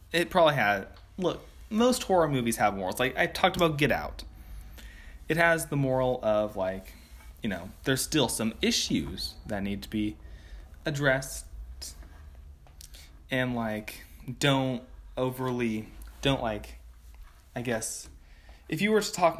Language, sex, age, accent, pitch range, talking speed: English, male, 20-39, American, 80-130 Hz, 140 wpm